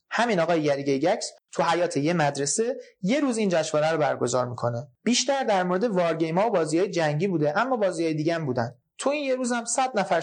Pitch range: 140-190 Hz